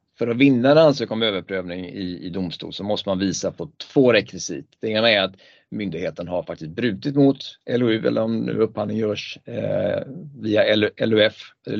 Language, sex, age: Swedish, male, 30-49